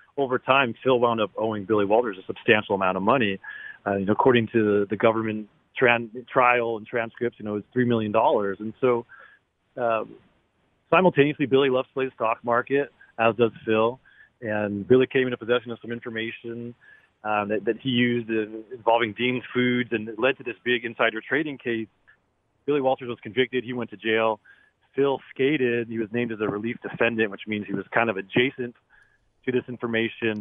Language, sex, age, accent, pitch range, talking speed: English, male, 40-59, American, 105-125 Hz, 195 wpm